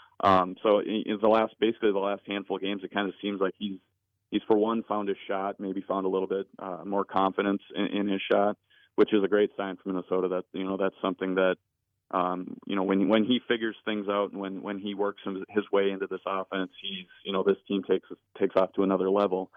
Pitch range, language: 95-105 Hz, English